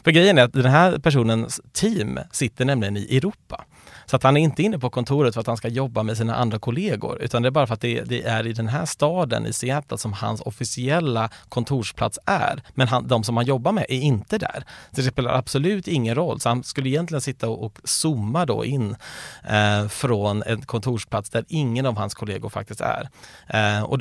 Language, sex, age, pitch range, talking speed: Swedish, male, 30-49, 115-140 Hz, 220 wpm